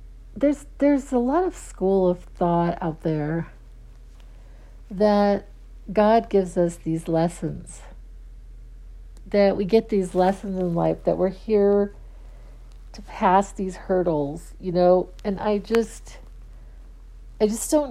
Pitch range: 165-195 Hz